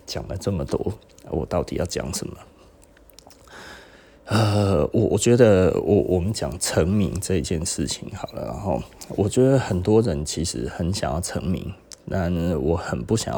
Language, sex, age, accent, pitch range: Chinese, male, 30-49, native, 80-105 Hz